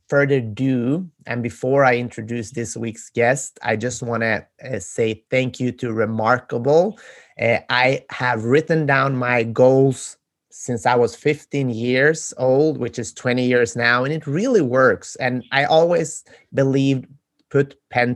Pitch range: 120-150 Hz